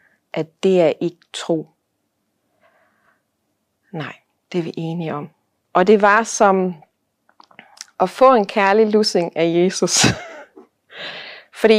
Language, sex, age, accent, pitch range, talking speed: Danish, female, 30-49, native, 175-220 Hz, 115 wpm